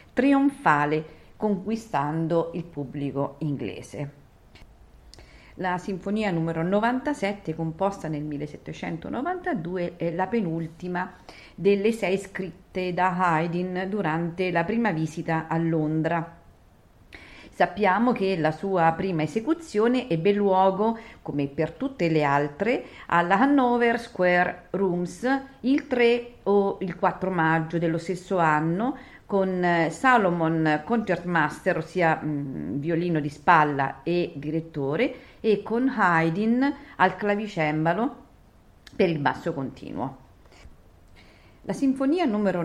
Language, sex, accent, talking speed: Italian, female, native, 105 wpm